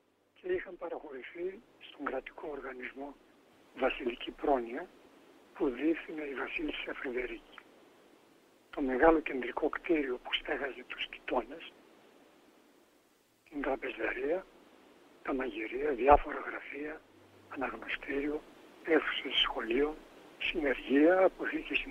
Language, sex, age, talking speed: Greek, male, 60-79, 90 wpm